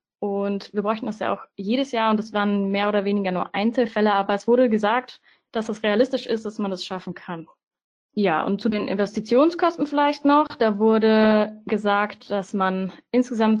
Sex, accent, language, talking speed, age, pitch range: female, German, German, 185 wpm, 20-39, 200-250 Hz